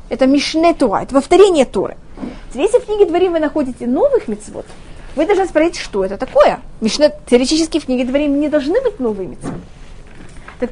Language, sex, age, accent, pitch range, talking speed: Russian, female, 20-39, native, 235-300 Hz, 170 wpm